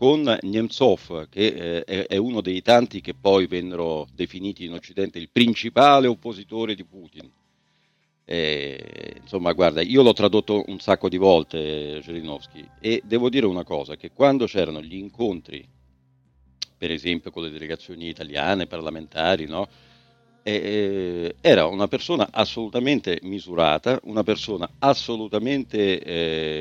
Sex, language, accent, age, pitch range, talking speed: male, Italian, native, 50-69, 80-115 Hz, 135 wpm